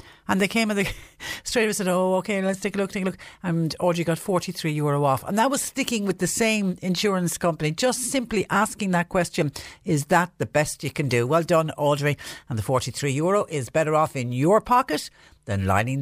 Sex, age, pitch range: female, 60-79, 120-170 Hz